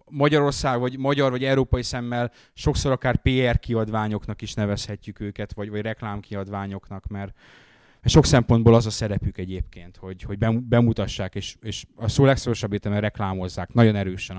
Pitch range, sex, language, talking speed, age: 105-130 Hz, male, Hungarian, 145 wpm, 30-49